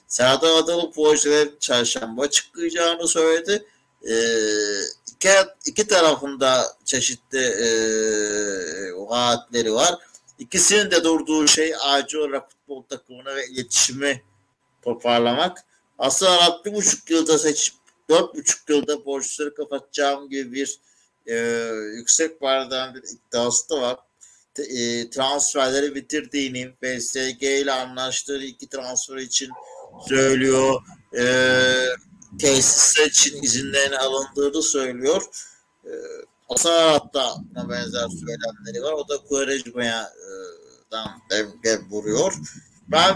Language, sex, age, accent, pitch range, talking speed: Turkish, male, 60-79, native, 125-165 Hz, 100 wpm